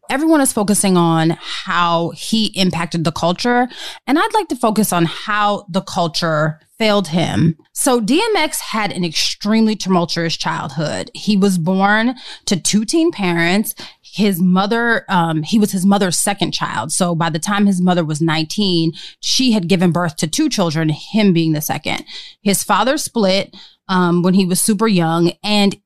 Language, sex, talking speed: English, female, 165 wpm